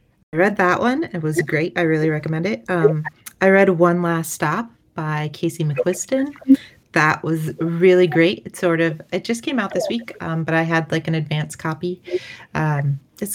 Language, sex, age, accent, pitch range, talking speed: English, female, 30-49, American, 155-180 Hz, 195 wpm